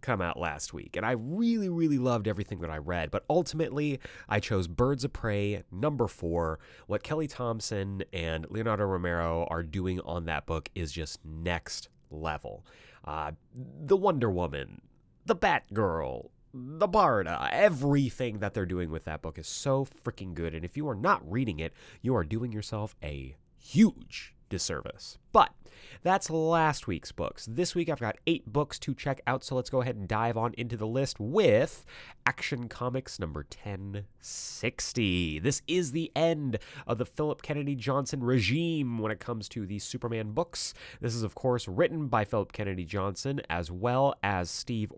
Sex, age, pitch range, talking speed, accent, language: male, 30-49, 90-140 Hz, 175 wpm, American, English